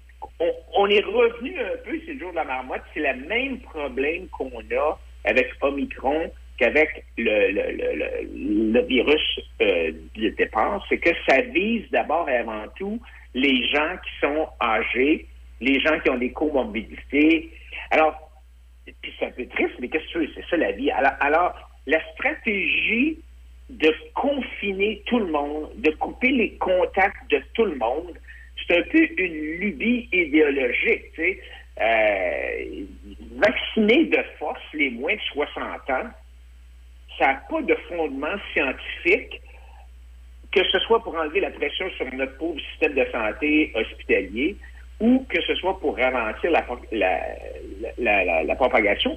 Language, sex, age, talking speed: French, male, 60-79, 155 wpm